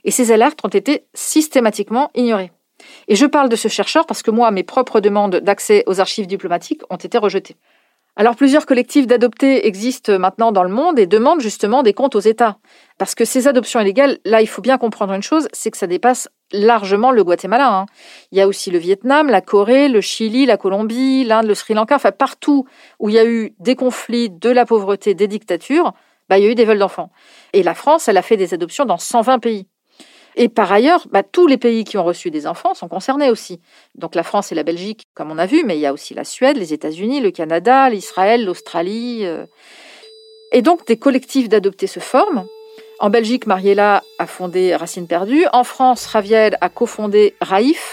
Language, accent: French, French